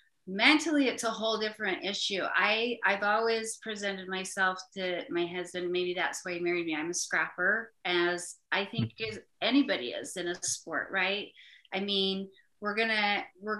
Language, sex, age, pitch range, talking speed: English, female, 30-49, 185-220 Hz, 165 wpm